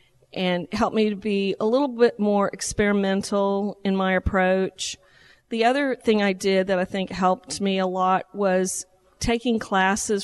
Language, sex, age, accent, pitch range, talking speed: English, female, 40-59, American, 190-215 Hz, 165 wpm